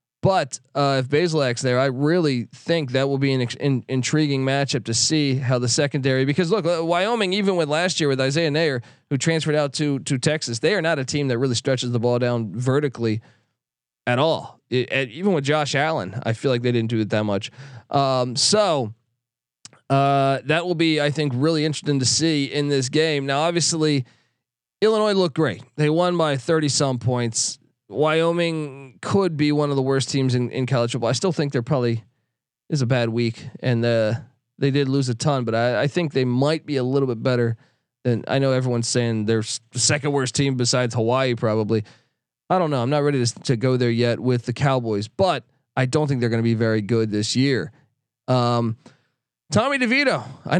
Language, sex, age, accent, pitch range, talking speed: English, male, 20-39, American, 125-155 Hz, 210 wpm